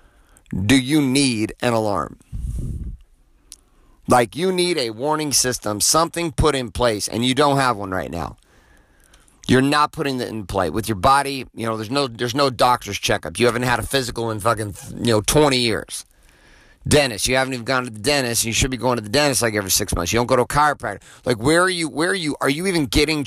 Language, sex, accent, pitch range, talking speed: English, male, American, 110-140 Hz, 225 wpm